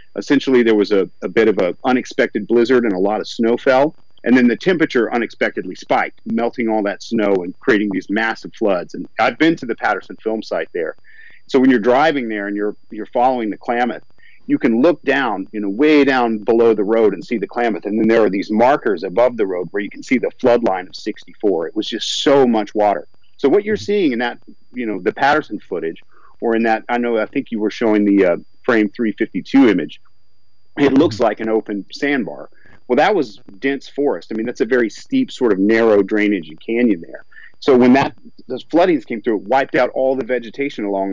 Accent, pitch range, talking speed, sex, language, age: American, 105-145 Hz, 225 wpm, male, English, 40-59